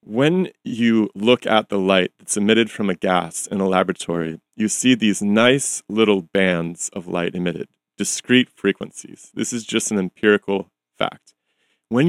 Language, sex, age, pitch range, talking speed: English, male, 30-49, 95-130 Hz, 160 wpm